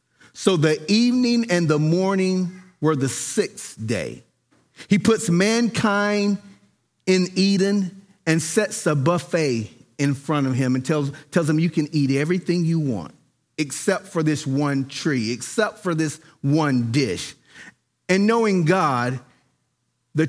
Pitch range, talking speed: 130-180 Hz, 140 wpm